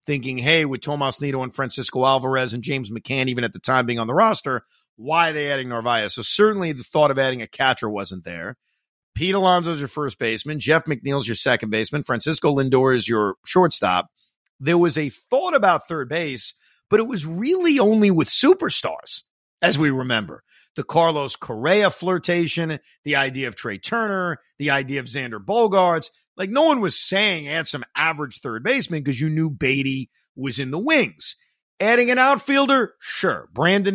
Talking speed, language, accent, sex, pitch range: 180 wpm, English, American, male, 130-185 Hz